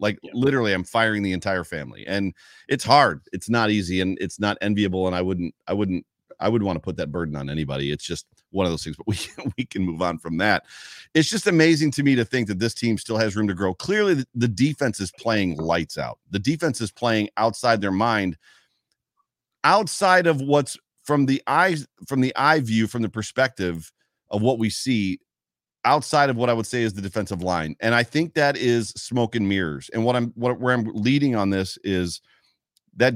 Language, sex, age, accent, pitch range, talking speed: English, male, 40-59, American, 90-120 Hz, 215 wpm